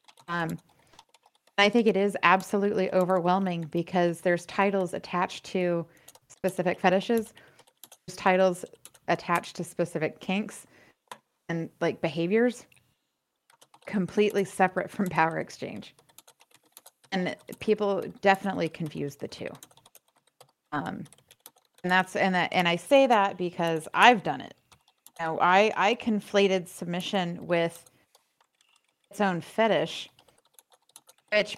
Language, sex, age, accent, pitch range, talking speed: English, female, 30-49, American, 170-200 Hz, 110 wpm